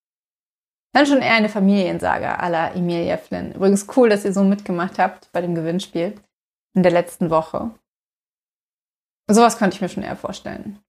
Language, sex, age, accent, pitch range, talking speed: German, female, 20-39, German, 195-230 Hz, 165 wpm